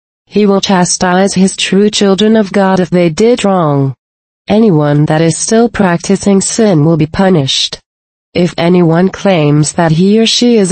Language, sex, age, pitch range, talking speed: English, female, 30-49, 160-195 Hz, 160 wpm